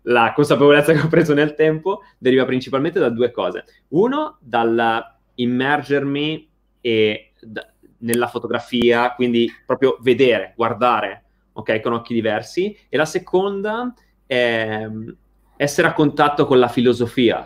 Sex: male